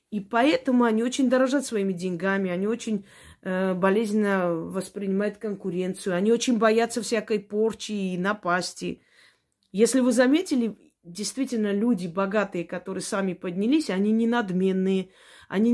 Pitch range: 185-230 Hz